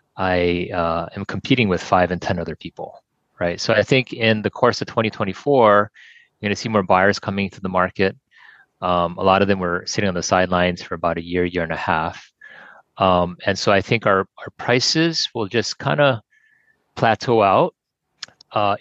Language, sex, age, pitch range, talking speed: English, male, 30-49, 90-110 Hz, 195 wpm